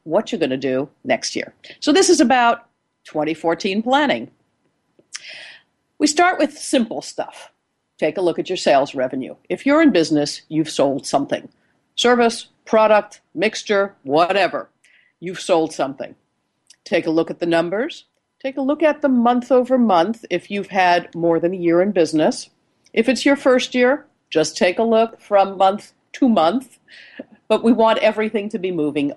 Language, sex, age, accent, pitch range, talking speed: English, female, 50-69, American, 180-275 Hz, 165 wpm